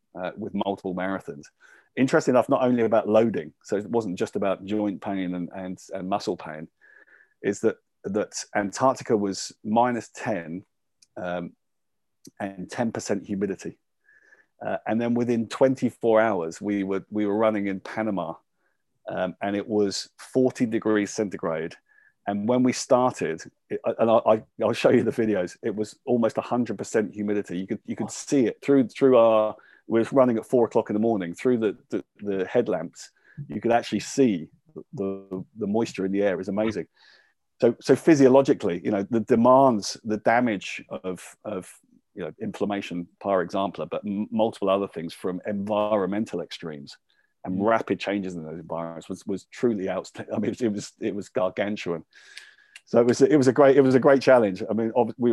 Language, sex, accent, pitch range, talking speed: English, male, British, 95-120 Hz, 170 wpm